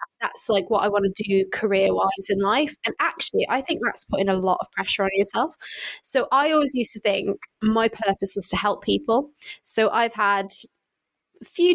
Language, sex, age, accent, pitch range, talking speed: English, female, 20-39, British, 200-255 Hz, 205 wpm